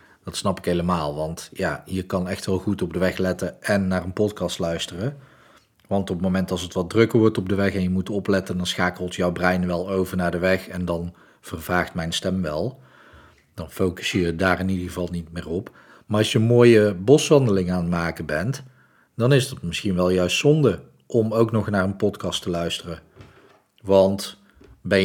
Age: 40-59